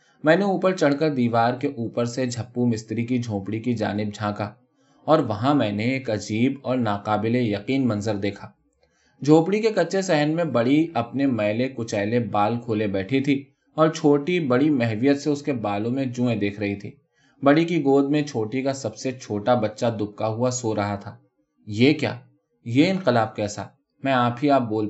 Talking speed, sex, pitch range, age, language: 190 wpm, male, 110-145 Hz, 20-39, Urdu